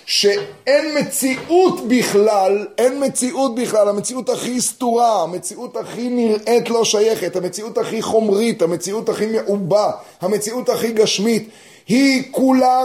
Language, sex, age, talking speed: Hebrew, male, 30-49, 115 wpm